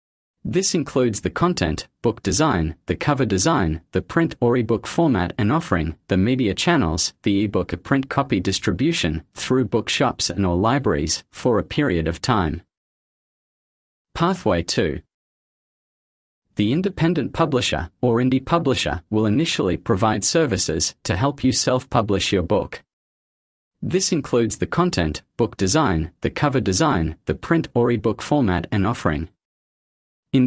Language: English